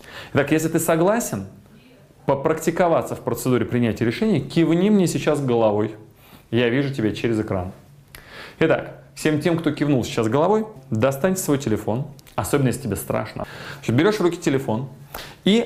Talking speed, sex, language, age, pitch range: 140 wpm, male, Russian, 20-39, 125-160 Hz